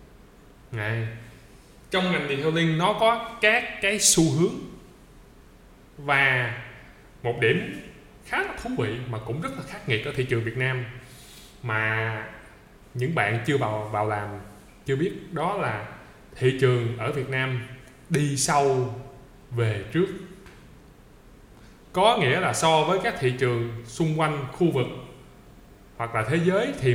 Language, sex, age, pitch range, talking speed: Vietnamese, male, 20-39, 120-160 Hz, 145 wpm